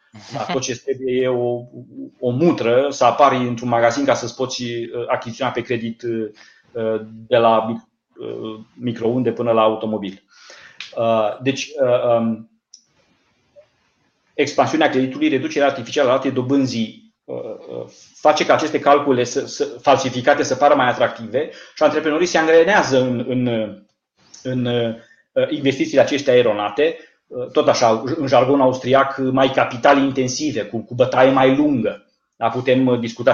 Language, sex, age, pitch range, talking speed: Romanian, male, 30-49, 120-150 Hz, 120 wpm